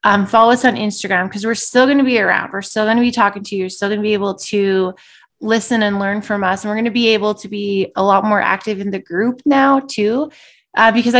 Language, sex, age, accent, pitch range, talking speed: English, female, 20-39, American, 200-240 Hz, 275 wpm